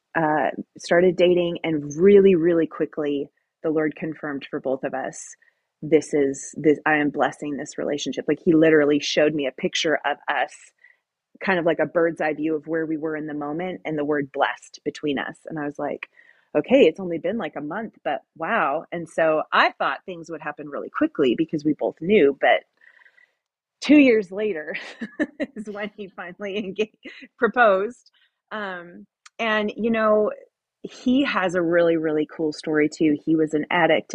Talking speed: 180 wpm